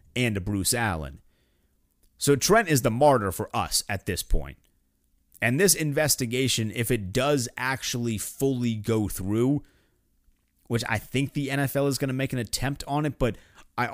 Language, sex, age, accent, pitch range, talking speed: English, male, 30-49, American, 85-120 Hz, 170 wpm